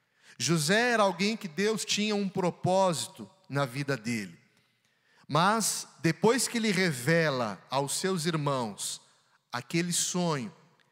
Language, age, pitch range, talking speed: Portuguese, 40-59, 145-185 Hz, 115 wpm